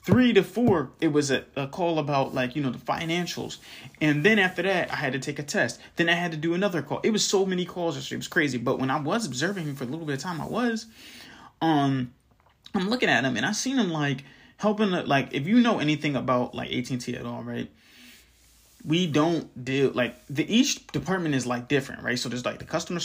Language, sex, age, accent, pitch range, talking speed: English, male, 20-39, American, 130-190 Hz, 235 wpm